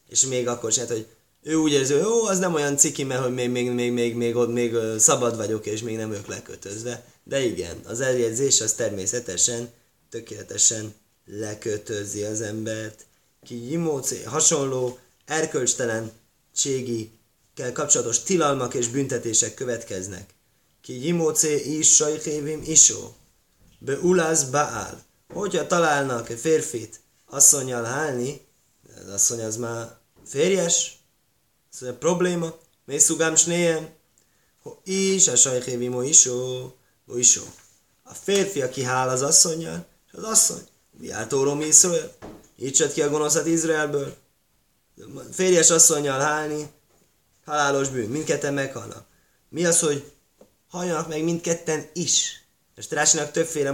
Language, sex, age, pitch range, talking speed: Hungarian, male, 20-39, 115-155 Hz, 125 wpm